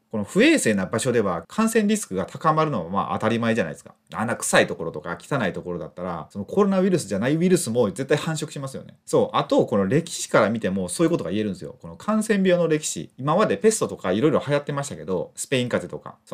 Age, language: 30-49, Japanese